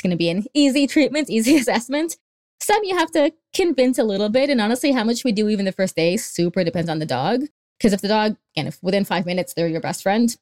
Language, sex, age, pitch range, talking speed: English, female, 20-39, 175-245 Hz, 255 wpm